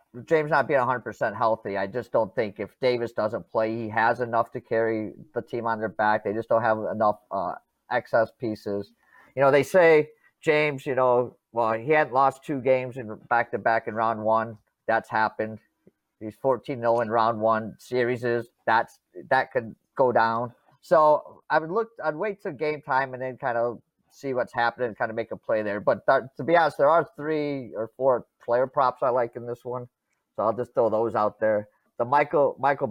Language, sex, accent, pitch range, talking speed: English, male, American, 110-135 Hz, 200 wpm